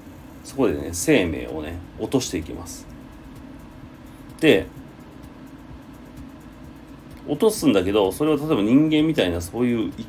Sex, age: male, 40-59